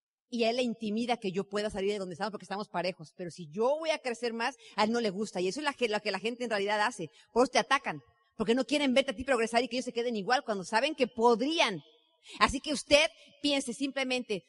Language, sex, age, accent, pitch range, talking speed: Spanish, female, 40-59, Mexican, 215-310 Hz, 260 wpm